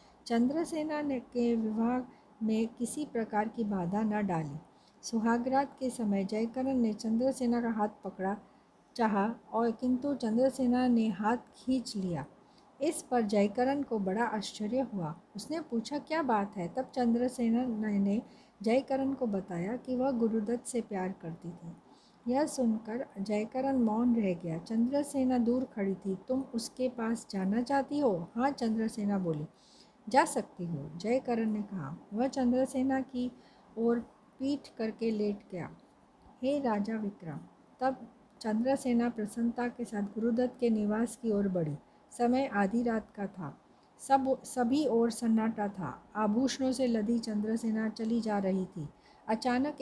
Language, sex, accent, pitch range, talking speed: Hindi, female, native, 210-255 Hz, 145 wpm